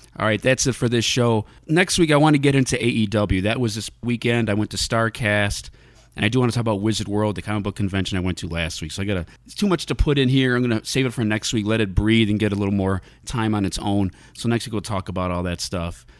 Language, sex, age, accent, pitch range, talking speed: English, male, 30-49, American, 90-110 Hz, 295 wpm